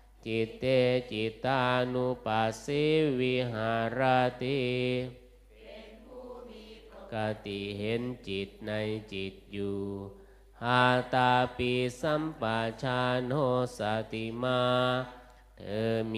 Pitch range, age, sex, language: 110-125 Hz, 20-39, male, Thai